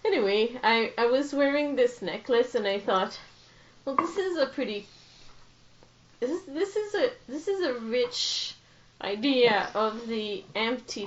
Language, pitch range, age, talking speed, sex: English, 185-240 Hz, 30-49, 145 wpm, female